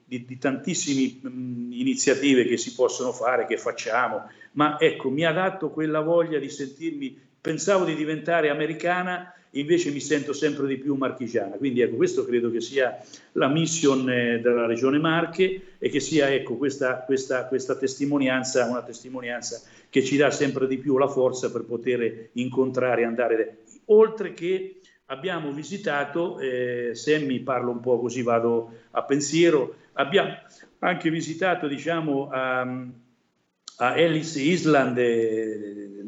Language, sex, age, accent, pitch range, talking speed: Italian, male, 50-69, native, 120-160 Hz, 150 wpm